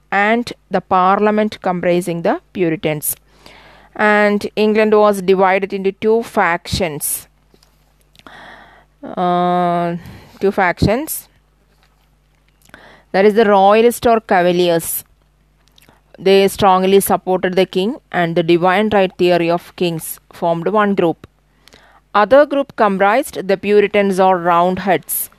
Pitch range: 175-205 Hz